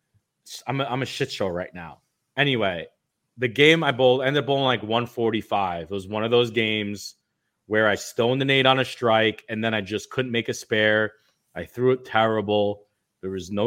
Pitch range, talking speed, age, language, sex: 105-125 Hz, 210 wpm, 30-49, English, male